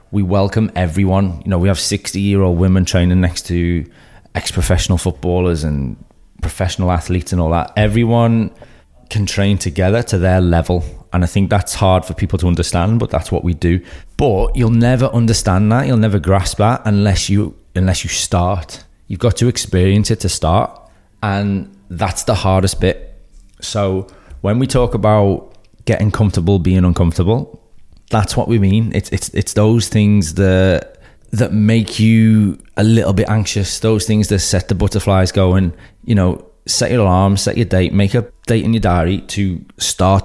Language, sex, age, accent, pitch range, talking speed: English, male, 20-39, British, 90-105 Hz, 175 wpm